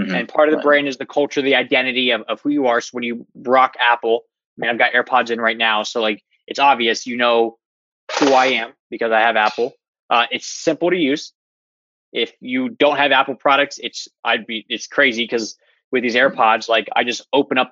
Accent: American